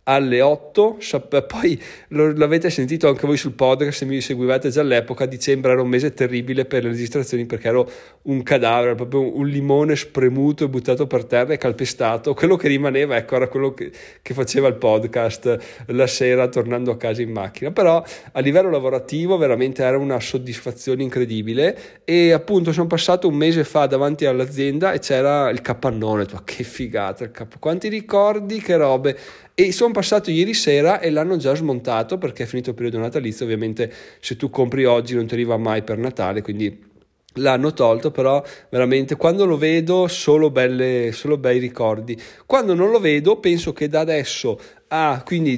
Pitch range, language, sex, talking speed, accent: 125-155 Hz, Italian, male, 180 wpm, native